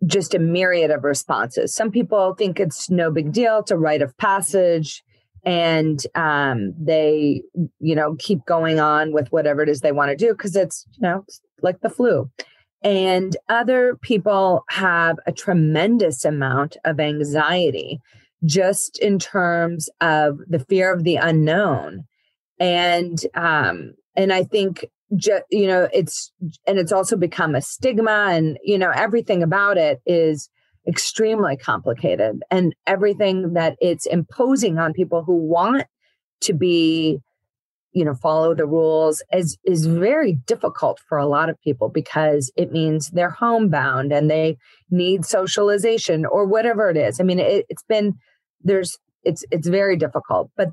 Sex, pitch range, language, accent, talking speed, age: female, 155-200 Hz, English, American, 155 wpm, 30-49